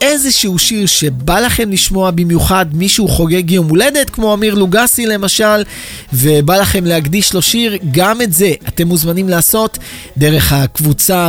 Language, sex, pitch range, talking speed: Hebrew, male, 155-215 Hz, 145 wpm